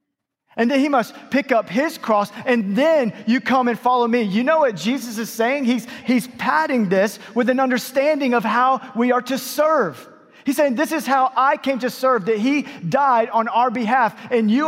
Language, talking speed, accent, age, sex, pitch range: English, 210 wpm, American, 30-49, male, 180-255 Hz